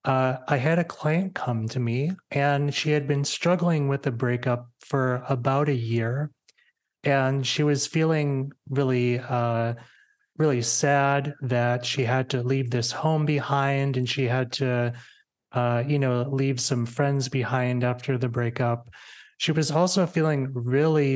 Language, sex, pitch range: English, male, 125-145 Hz